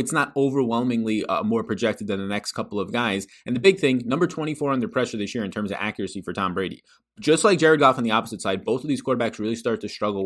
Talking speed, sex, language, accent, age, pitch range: 265 wpm, male, English, American, 20-39, 105-140 Hz